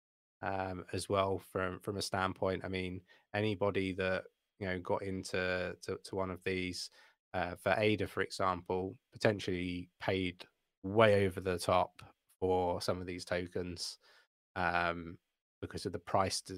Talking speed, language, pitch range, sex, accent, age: 150 wpm, English, 90-105 Hz, male, British, 20-39